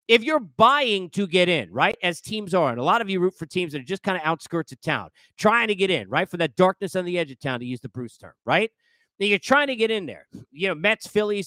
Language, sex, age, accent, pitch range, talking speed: English, male, 40-59, American, 175-260 Hz, 295 wpm